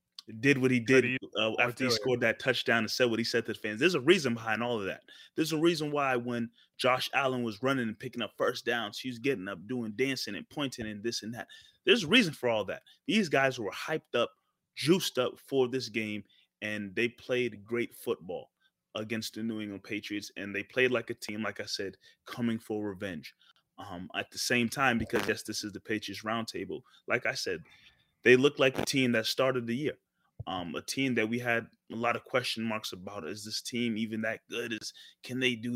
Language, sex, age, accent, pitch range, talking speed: English, male, 30-49, American, 110-130 Hz, 225 wpm